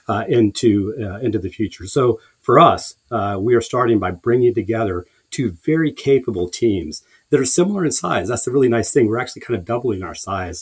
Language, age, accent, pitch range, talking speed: English, 40-59, American, 100-125 Hz, 210 wpm